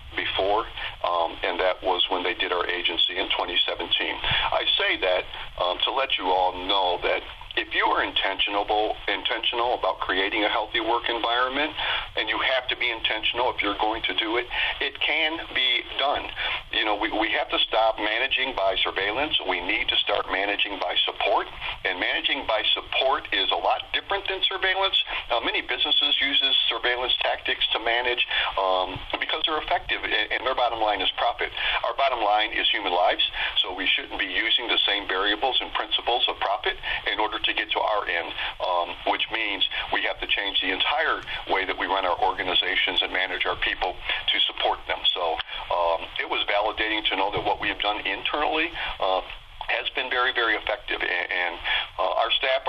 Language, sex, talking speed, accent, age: English, male, 190 wpm, American, 50-69